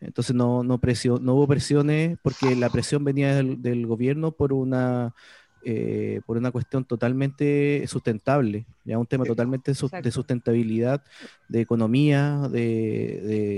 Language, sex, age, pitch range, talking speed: Spanish, male, 30-49, 120-150 Hz, 145 wpm